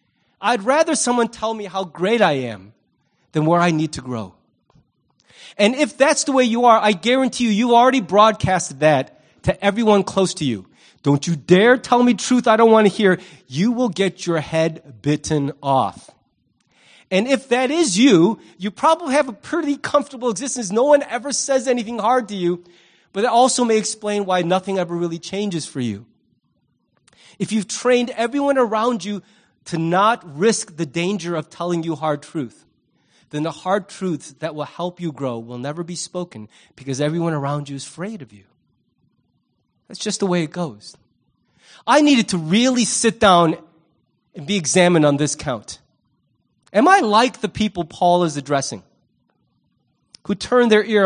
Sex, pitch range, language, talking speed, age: male, 165-240 Hz, English, 175 wpm, 30-49